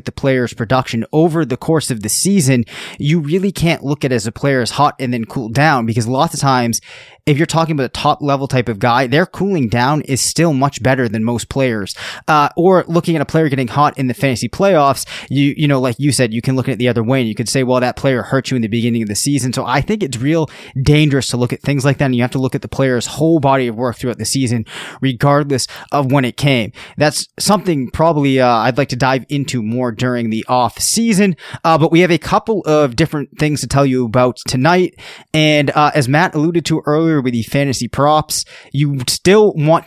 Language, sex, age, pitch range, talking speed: English, male, 20-39, 125-150 Hz, 245 wpm